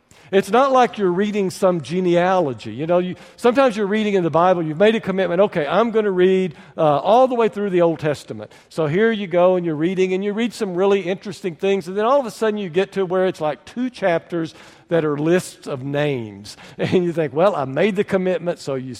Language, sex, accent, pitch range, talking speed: English, male, American, 170-215 Hz, 240 wpm